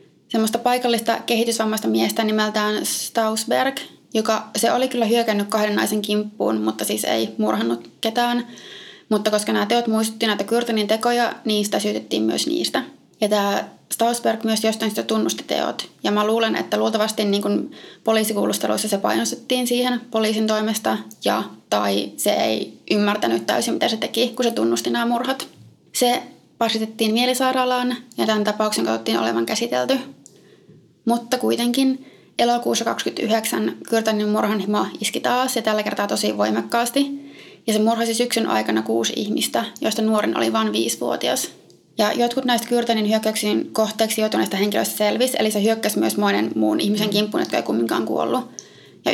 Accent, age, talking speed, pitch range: native, 20-39, 150 wpm, 205-235 Hz